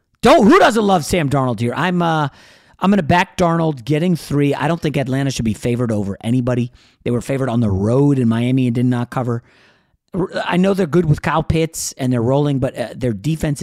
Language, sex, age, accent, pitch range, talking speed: English, male, 40-59, American, 120-165 Hz, 225 wpm